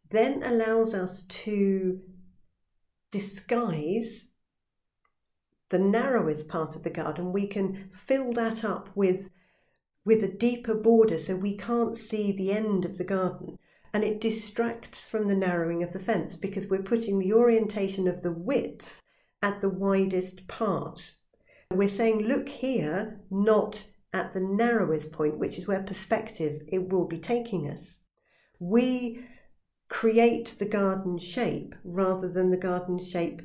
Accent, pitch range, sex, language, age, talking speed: British, 185-225 Hz, female, English, 50-69, 140 wpm